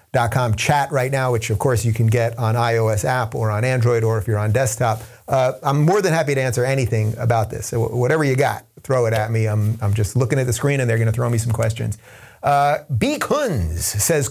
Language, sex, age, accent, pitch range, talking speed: English, male, 30-49, American, 115-145 Hz, 240 wpm